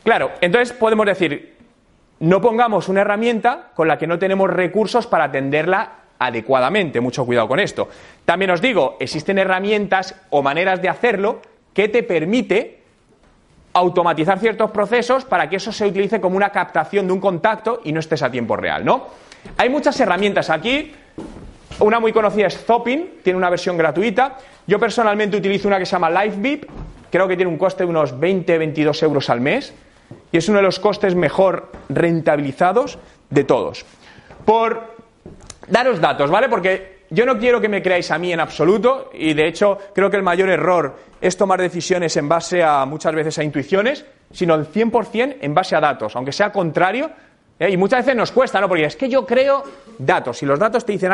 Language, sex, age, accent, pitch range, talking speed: Spanish, male, 30-49, Spanish, 170-235 Hz, 185 wpm